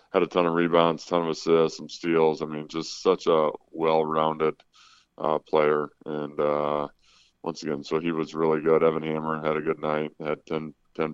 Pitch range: 75-80 Hz